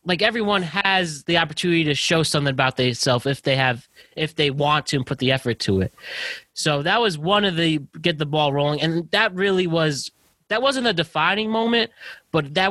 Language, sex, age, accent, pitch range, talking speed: English, male, 20-39, American, 125-160 Hz, 215 wpm